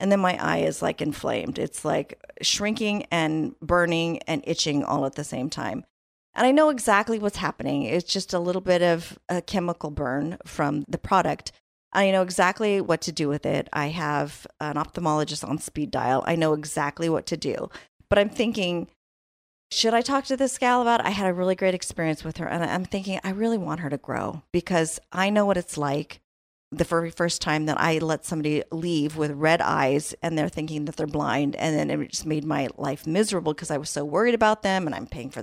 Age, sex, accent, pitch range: 40-59, female, American, 145-185 Hz